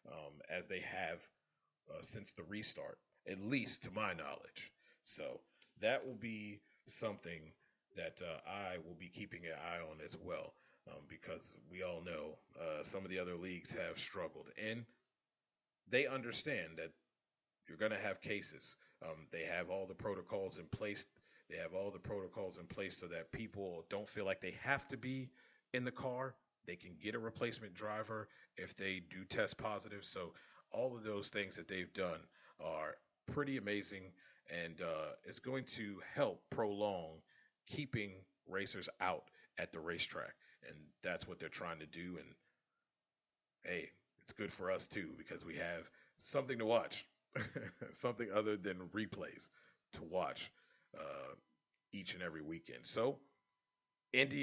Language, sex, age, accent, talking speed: English, male, 30-49, American, 160 wpm